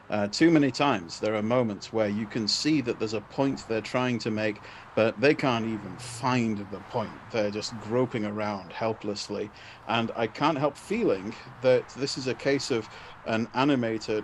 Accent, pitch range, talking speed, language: British, 105-130 Hz, 185 wpm, English